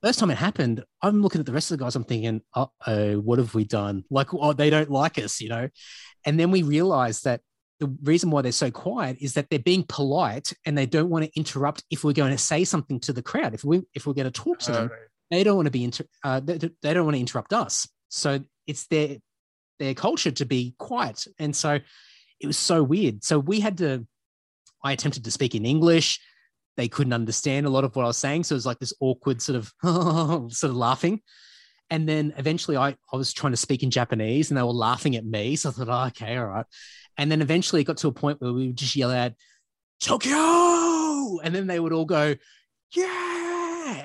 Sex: male